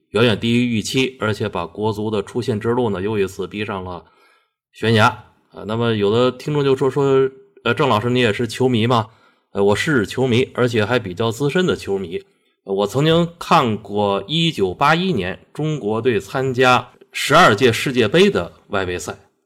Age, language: 30-49, Chinese